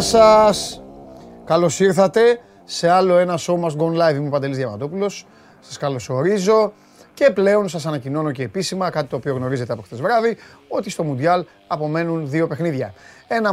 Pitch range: 125-165 Hz